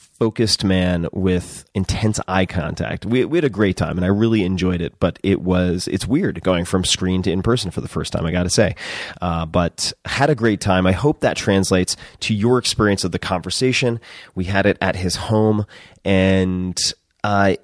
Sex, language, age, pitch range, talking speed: male, English, 30-49, 90-110 Hz, 200 wpm